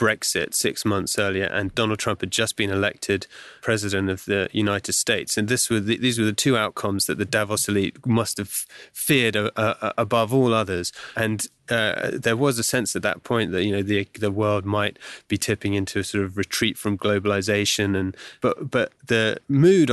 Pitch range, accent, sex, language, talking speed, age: 105-120 Hz, British, male, English, 200 wpm, 30-49